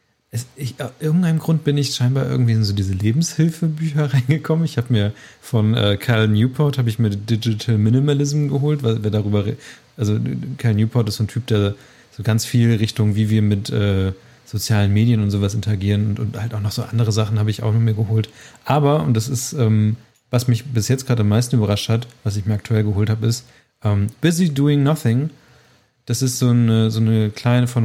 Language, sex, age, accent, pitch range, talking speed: German, male, 30-49, German, 110-135 Hz, 215 wpm